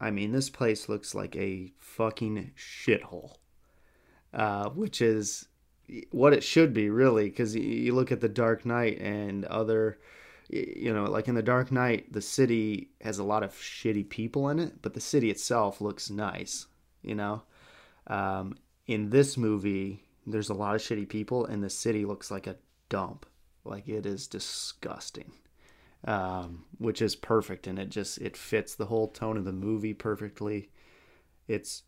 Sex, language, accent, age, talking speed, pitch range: male, English, American, 30-49, 170 wpm, 100-110 Hz